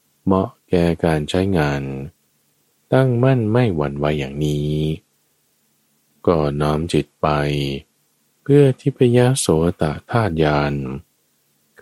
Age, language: 20-39, Thai